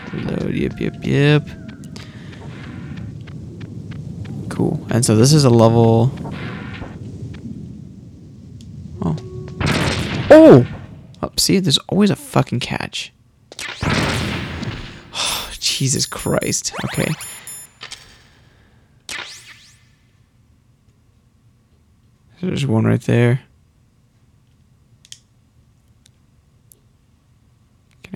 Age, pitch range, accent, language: 20-39, 115-125 Hz, American, English